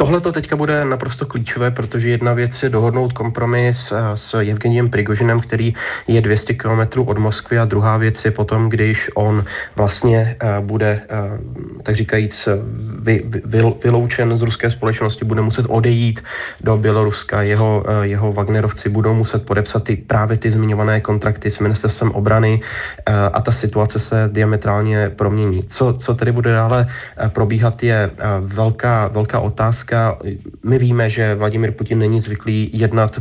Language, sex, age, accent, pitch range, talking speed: Czech, male, 20-39, native, 105-115 Hz, 145 wpm